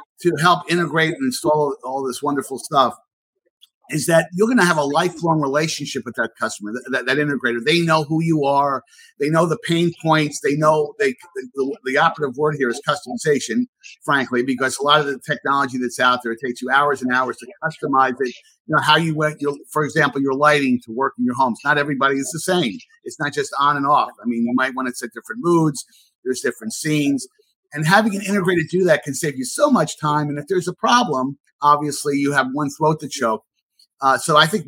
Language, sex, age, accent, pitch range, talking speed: English, male, 50-69, American, 135-170 Hz, 225 wpm